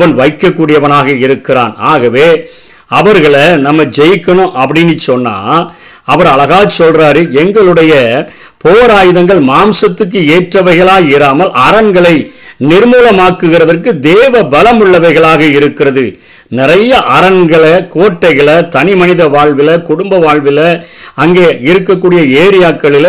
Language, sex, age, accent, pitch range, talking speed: Tamil, male, 50-69, native, 150-180 Hz, 85 wpm